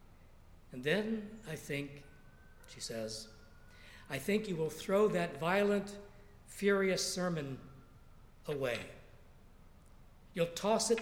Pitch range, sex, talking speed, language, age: 110-175 Hz, male, 105 wpm, English, 60-79